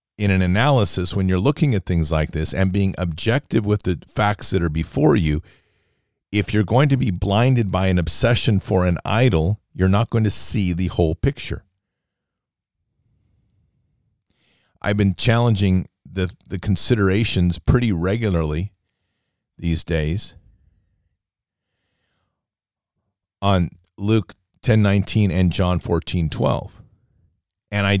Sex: male